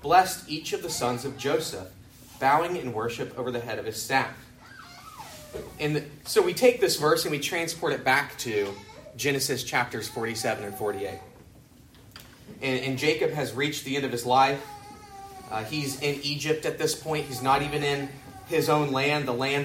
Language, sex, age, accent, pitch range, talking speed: English, male, 30-49, American, 125-155 Hz, 180 wpm